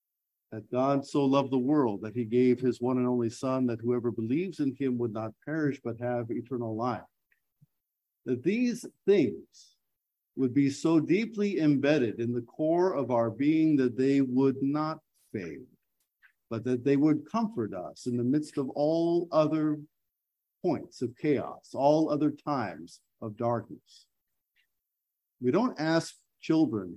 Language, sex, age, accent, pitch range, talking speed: English, male, 50-69, American, 120-155 Hz, 155 wpm